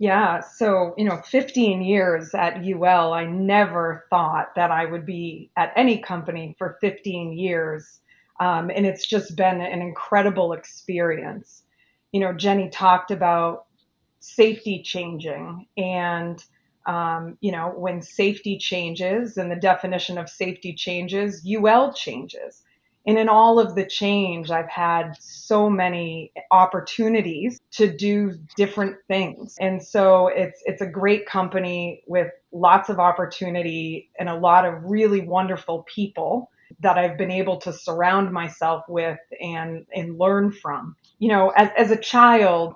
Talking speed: 145 wpm